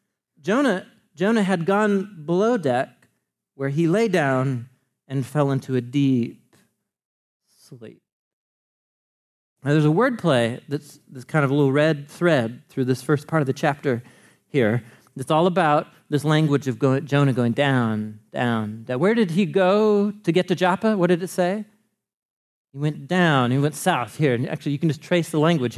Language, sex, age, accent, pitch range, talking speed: English, male, 40-59, American, 135-180 Hz, 170 wpm